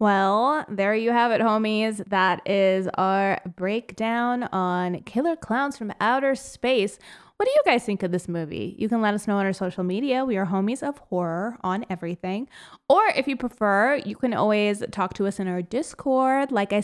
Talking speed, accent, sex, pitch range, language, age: 195 wpm, American, female, 185-245 Hz, English, 20-39